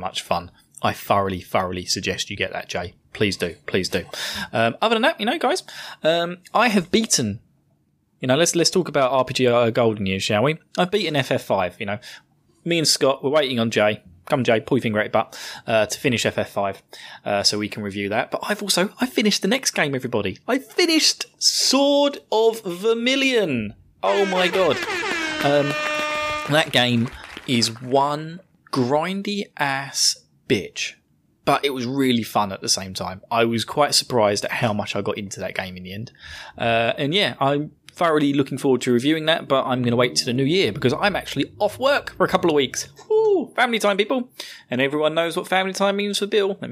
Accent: British